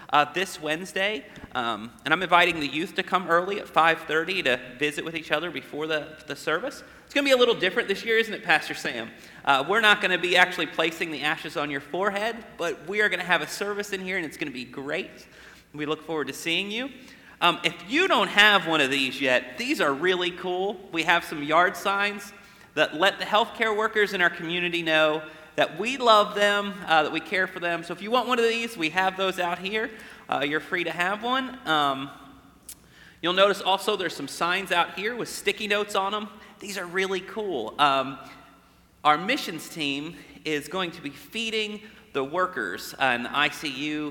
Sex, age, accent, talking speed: male, 30-49, American, 215 wpm